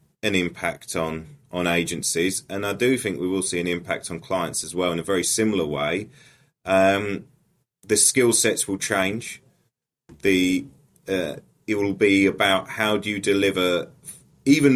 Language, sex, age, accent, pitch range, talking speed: English, male, 30-49, British, 90-105 Hz, 165 wpm